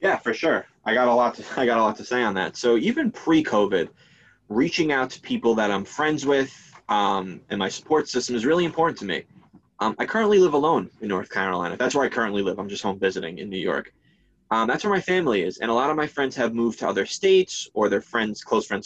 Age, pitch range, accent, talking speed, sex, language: 20-39, 105-155 Hz, American, 255 wpm, male, English